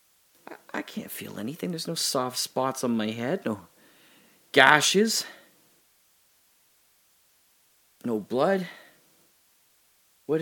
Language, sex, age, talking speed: English, male, 40-59, 90 wpm